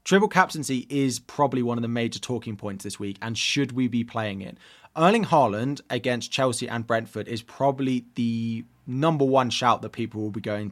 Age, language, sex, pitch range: 20-39, English, male, 110-135 Hz